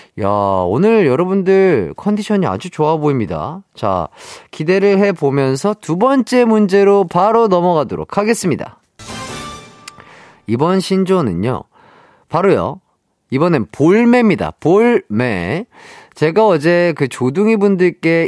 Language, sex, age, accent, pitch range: Korean, male, 40-59, native, 150-200 Hz